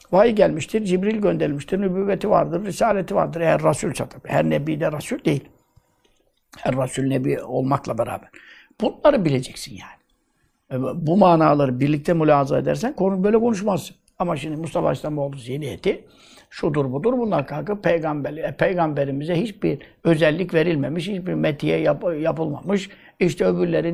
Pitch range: 140-190 Hz